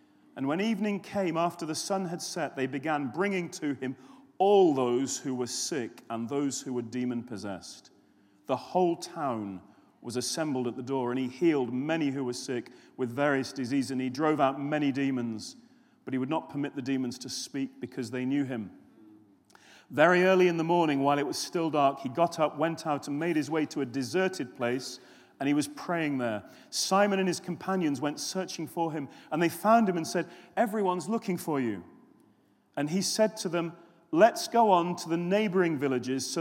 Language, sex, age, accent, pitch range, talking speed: English, male, 40-59, British, 135-190 Hz, 200 wpm